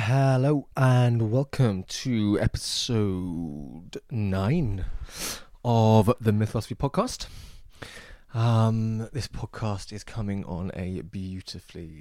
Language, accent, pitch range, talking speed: English, British, 95-110 Hz, 90 wpm